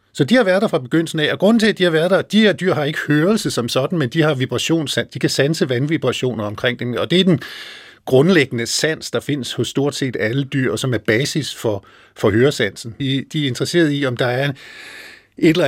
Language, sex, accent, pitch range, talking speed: Danish, male, native, 120-160 Hz, 240 wpm